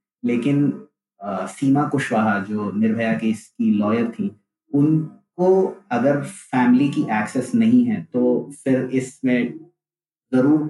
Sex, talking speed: male, 120 wpm